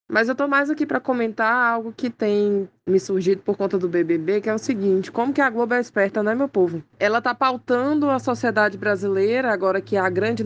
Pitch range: 180-220 Hz